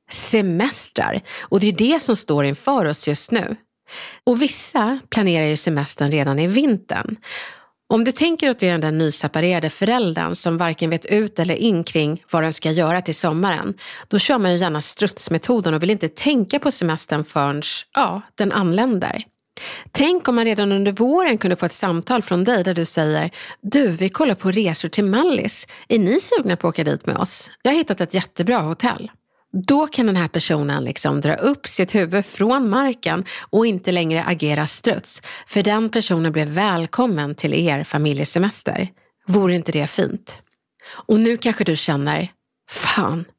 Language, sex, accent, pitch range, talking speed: Swedish, female, native, 165-225 Hz, 180 wpm